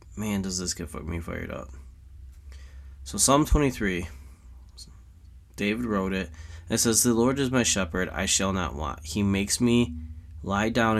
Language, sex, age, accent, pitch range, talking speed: English, male, 20-39, American, 85-105 Hz, 165 wpm